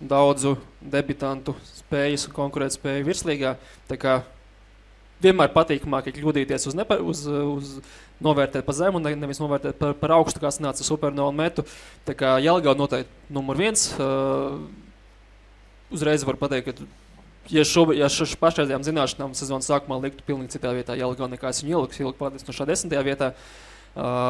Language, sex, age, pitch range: English, male, 20-39, 130-150 Hz